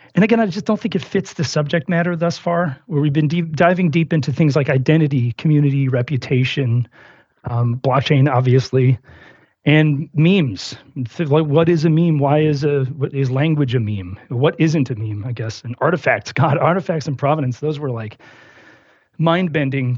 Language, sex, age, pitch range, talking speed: English, male, 40-59, 135-165 Hz, 180 wpm